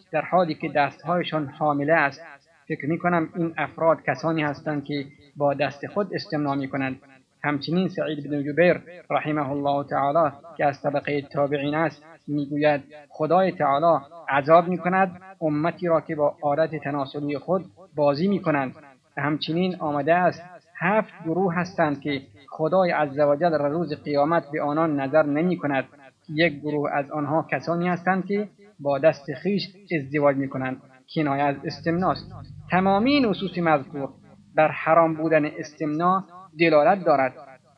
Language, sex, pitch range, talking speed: Persian, male, 145-170 Hz, 135 wpm